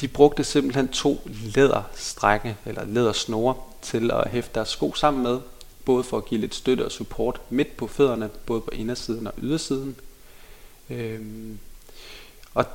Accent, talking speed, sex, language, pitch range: native, 150 wpm, male, Danish, 110-135 Hz